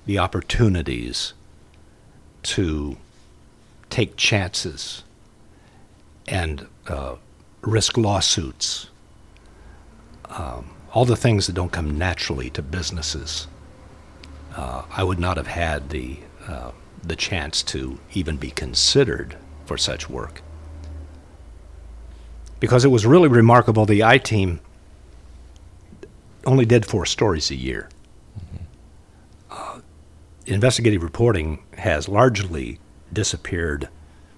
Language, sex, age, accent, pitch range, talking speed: English, male, 60-79, American, 75-100 Hz, 95 wpm